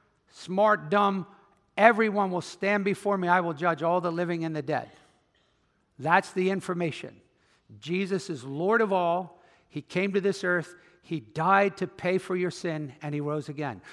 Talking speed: 170 wpm